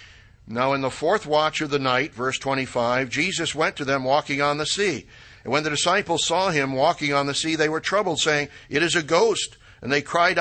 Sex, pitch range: male, 120-160 Hz